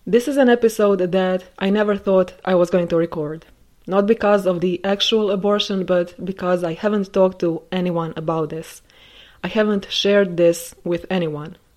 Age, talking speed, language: 20-39, 175 wpm, English